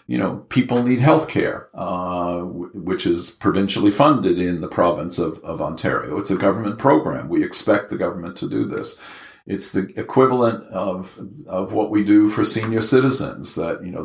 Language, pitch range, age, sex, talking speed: English, 95-115 Hz, 50-69, male, 180 wpm